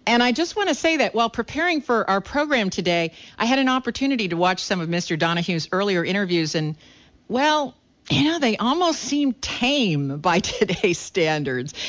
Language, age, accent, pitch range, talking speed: English, 50-69, American, 160-220 Hz, 180 wpm